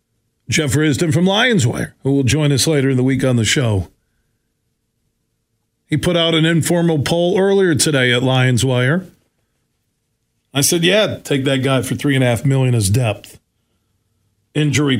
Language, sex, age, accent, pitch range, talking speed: English, male, 40-59, American, 115-170 Hz, 160 wpm